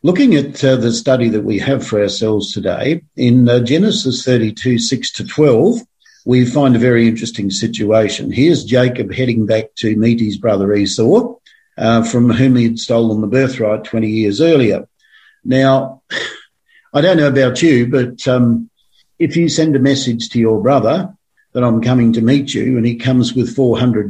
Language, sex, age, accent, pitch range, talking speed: English, male, 50-69, Australian, 115-135 Hz, 175 wpm